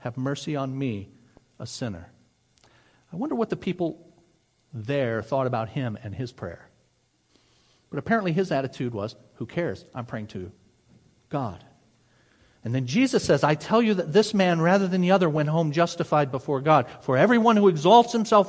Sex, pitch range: male, 135-180 Hz